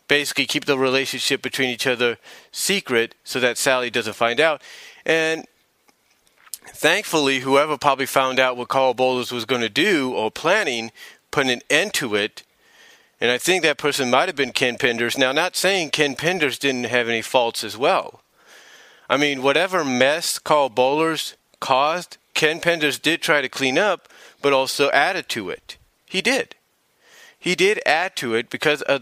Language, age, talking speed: English, 40-59, 170 wpm